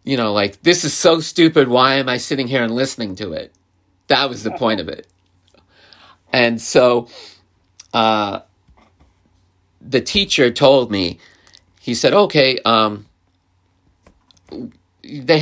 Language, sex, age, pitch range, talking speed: English, male, 40-59, 100-135 Hz, 130 wpm